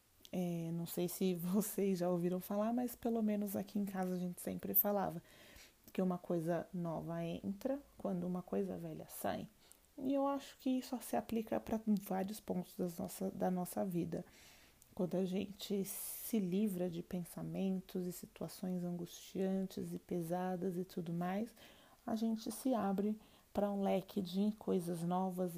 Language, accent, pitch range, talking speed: Portuguese, Brazilian, 180-215 Hz, 150 wpm